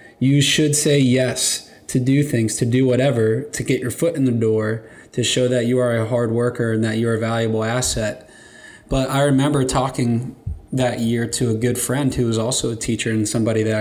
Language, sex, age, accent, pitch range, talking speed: English, male, 20-39, American, 115-130 Hz, 215 wpm